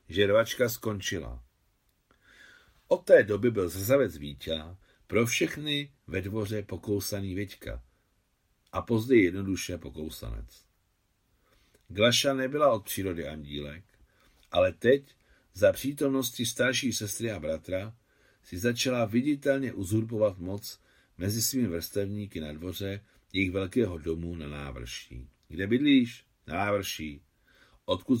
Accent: native